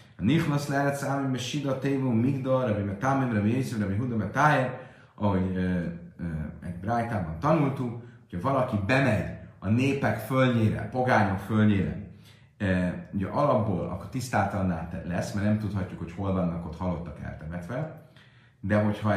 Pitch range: 90-125 Hz